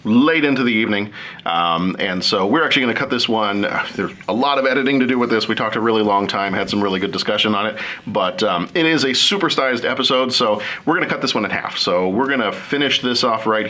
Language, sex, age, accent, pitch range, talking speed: English, male, 40-59, American, 100-130 Hz, 265 wpm